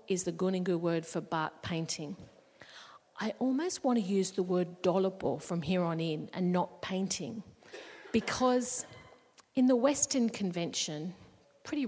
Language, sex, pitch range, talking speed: English, female, 175-210 Hz, 140 wpm